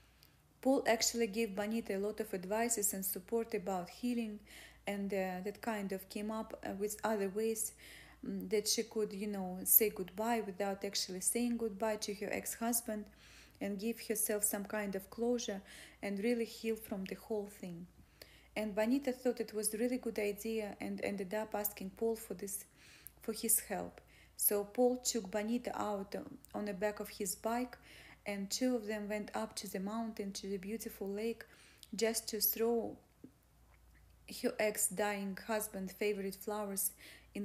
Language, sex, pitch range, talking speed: English, female, 200-225 Hz, 165 wpm